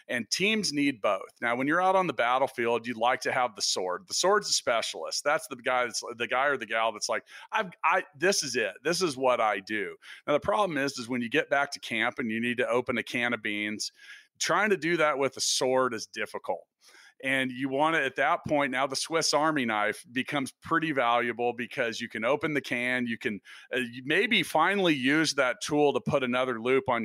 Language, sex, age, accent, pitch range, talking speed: English, male, 40-59, American, 120-145 Hz, 235 wpm